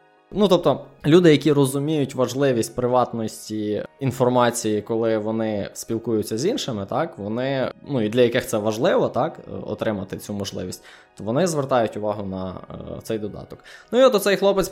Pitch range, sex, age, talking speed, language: 110-140 Hz, male, 20-39, 155 wpm, Ukrainian